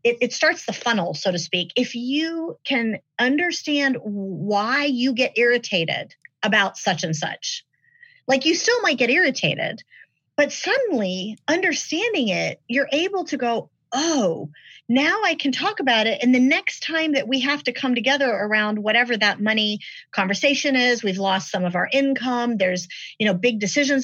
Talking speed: 170 wpm